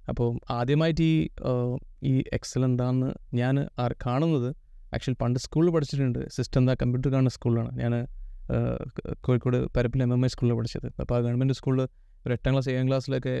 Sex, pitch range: male, 120-135 Hz